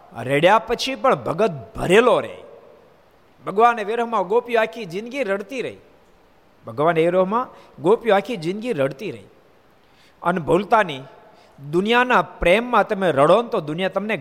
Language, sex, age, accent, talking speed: Gujarati, male, 50-69, native, 135 wpm